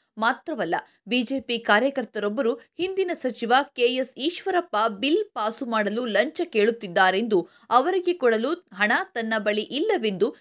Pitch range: 225-310 Hz